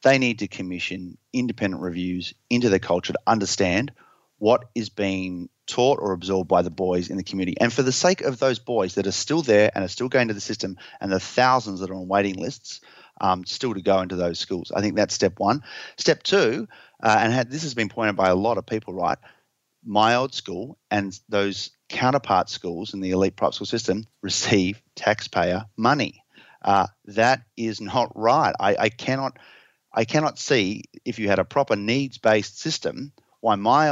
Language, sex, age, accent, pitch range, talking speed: English, male, 30-49, Australian, 95-120 Hz, 195 wpm